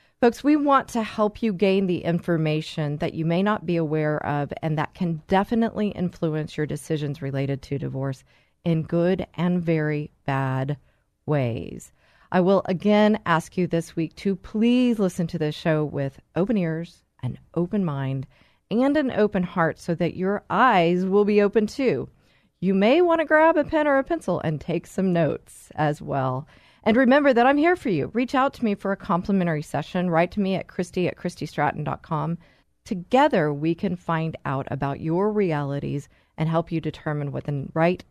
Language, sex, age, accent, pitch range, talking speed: English, female, 40-59, American, 155-210 Hz, 185 wpm